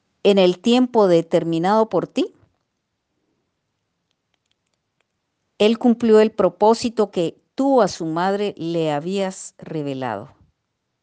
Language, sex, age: Spanish, female, 40-59